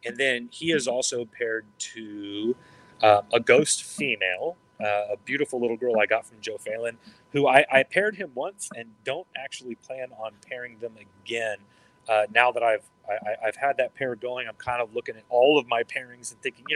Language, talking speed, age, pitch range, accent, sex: English, 205 wpm, 30-49, 110-135 Hz, American, male